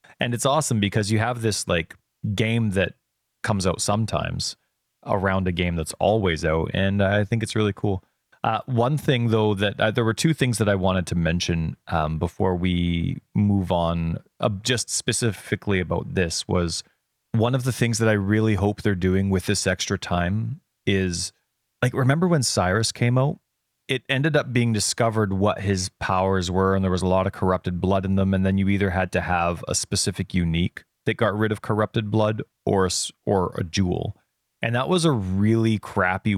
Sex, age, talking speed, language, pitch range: male, 30-49, 195 wpm, English, 95-115 Hz